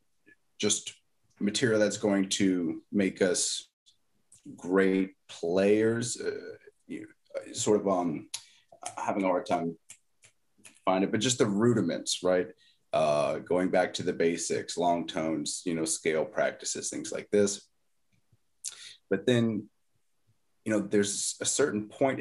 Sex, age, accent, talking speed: male, 30-49, American, 130 wpm